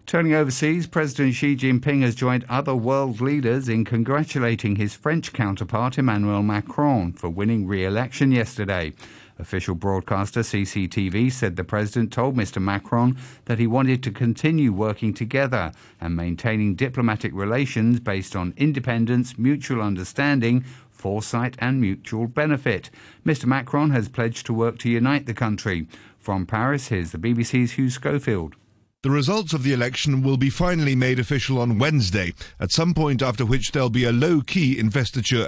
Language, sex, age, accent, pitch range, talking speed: English, male, 50-69, British, 110-140 Hz, 150 wpm